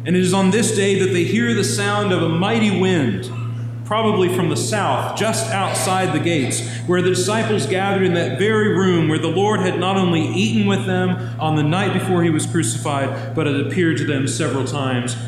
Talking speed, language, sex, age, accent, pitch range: 210 wpm, English, male, 40-59, American, 120-175 Hz